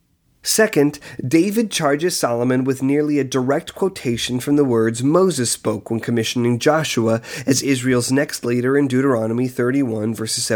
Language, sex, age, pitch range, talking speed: English, male, 30-49, 125-160 Hz, 140 wpm